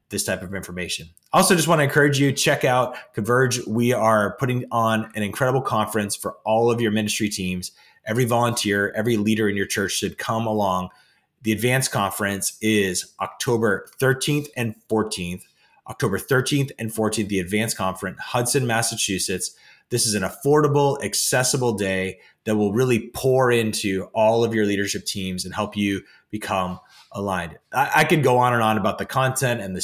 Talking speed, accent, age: 175 wpm, American, 30-49